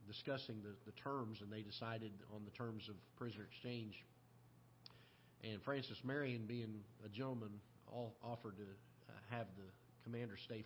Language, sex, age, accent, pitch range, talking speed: English, male, 40-59, American, 105-125 Hz, 150 wpm